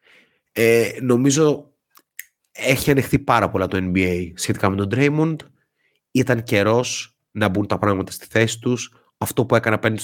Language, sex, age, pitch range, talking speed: Greek, male, 30-49, 105-135 Hz, 150 wpm